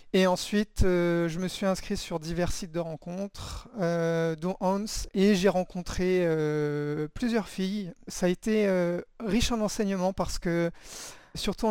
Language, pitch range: French, 170-200 Hz